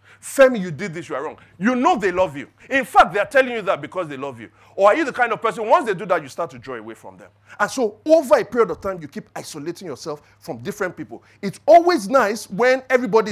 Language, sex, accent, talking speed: English, male, Nigerian, 270 wpm